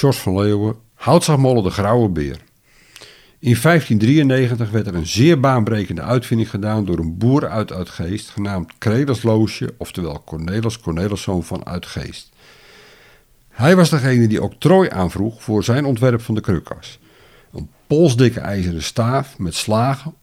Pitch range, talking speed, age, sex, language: 95-130 Hz, 140 wpm, 50-69, male, Dutch